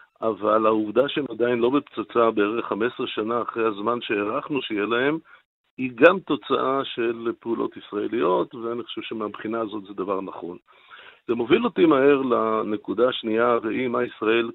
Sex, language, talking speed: male, Hebrew, 150 wpm